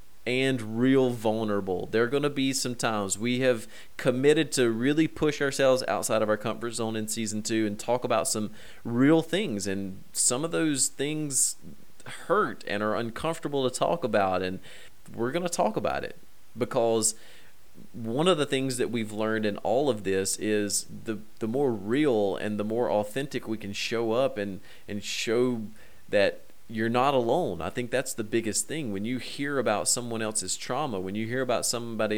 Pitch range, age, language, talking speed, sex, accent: 110-135 Hz, 30-49, English, 185 wpm, male, American